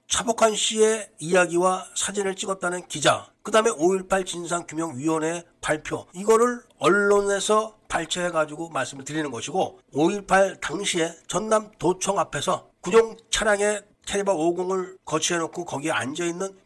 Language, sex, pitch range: Korean, male, 140-200 Hz